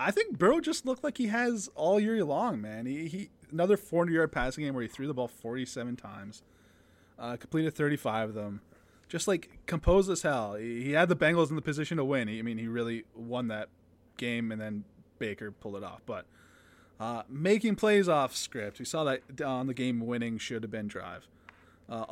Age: 20-39